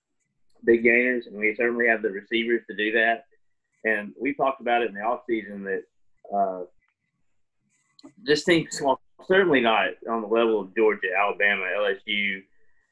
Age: 30-49